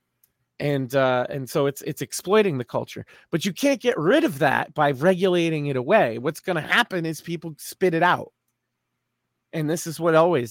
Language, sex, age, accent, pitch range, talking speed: English, male, 30-49, American, 125-175 Hz, 195 wpm